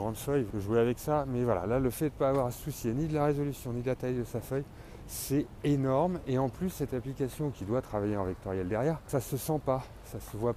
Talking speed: 275 wpm